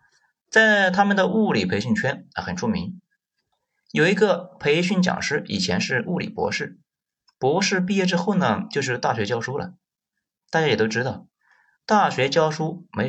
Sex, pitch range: male, 150-205 Hz